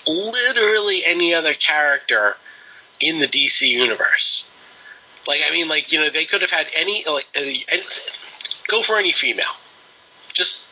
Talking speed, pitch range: 140 wpm, 125-170 Hz